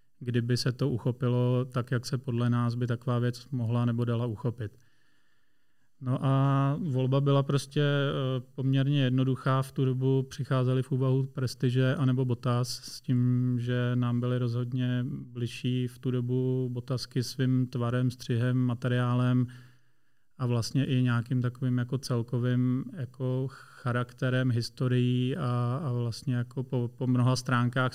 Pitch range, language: 120-130 Hz, Czech